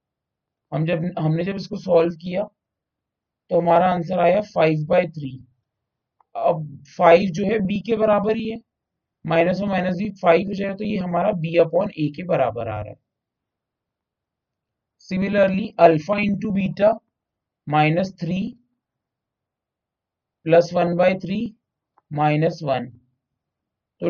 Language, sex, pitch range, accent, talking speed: English, male, 150-195 Hz, Indian, 130 wpm